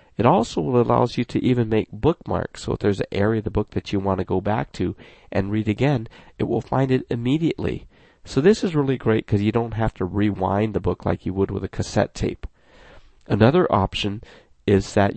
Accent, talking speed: American, 220 wpm